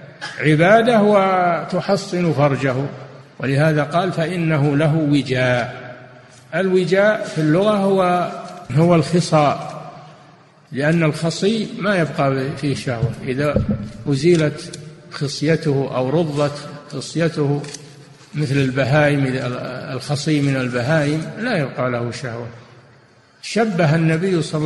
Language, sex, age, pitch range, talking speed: Arabic, male, 50-69, 135-160 Hz, 90 wpm